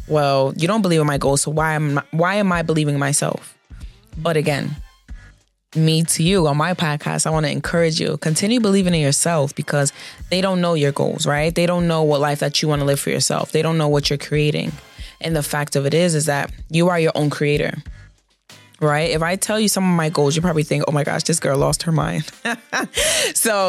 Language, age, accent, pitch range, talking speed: English, 20-39, American, 145-170 Hz, 235 wpm